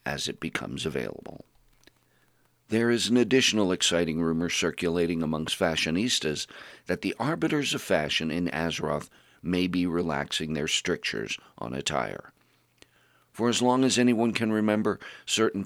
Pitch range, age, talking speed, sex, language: 85-120 Hz, 50-69, 135 wpm, male, English